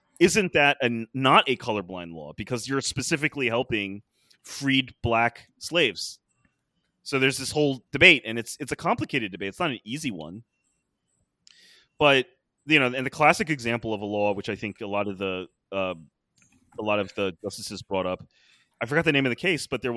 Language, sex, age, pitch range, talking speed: English, male, 30-49, 105-135 Hz, 190 wpm